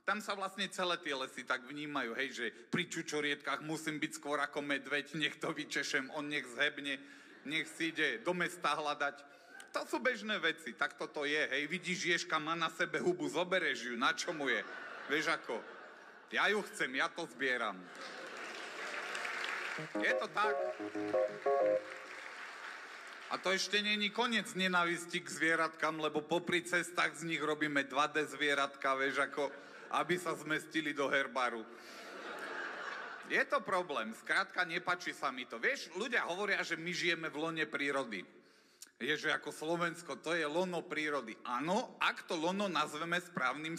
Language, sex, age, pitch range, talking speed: Czech, male, 40-59, 145-190 Hz, 150 wpm